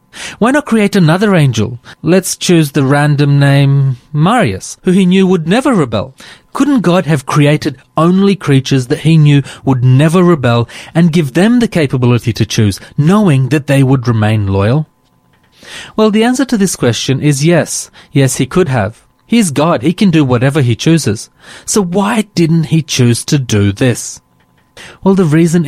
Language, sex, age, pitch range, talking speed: English, male, 30-49, 125-175 Hz, 170 wpm